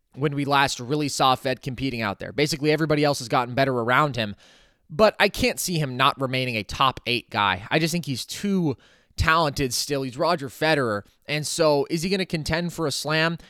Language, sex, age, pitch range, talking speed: English, male, 20-39, 130-160 Hz, 215 wpm